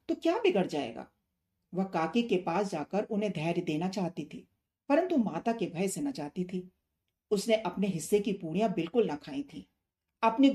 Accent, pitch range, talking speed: native, 165-225 Hz, 180 wpm